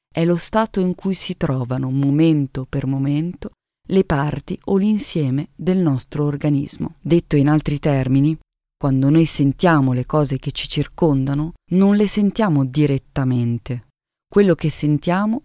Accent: native